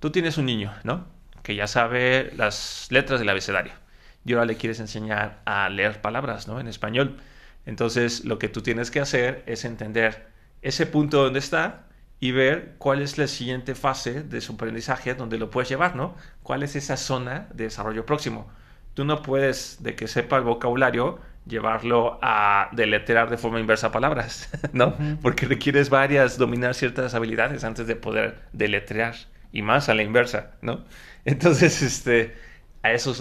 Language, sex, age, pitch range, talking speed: Spanish, male, 30-49, 110-135 Hz, 175 wpm